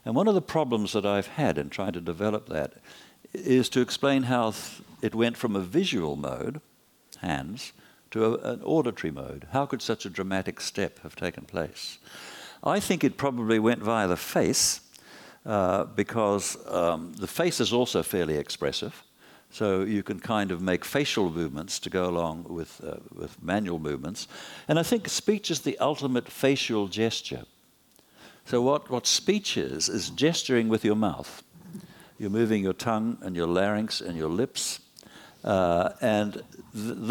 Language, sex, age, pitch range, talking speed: English, male, 60-79, 95-135 Hz, 165 wpm